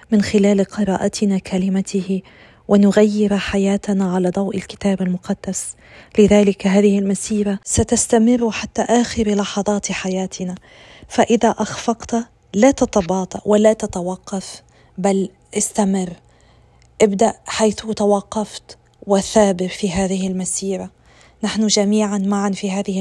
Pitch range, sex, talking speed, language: 190-215 Hz, female, 100 wpm, Arabic